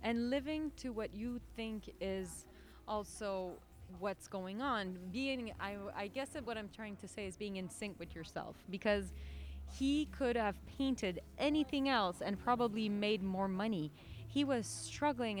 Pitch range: 190-245 Hz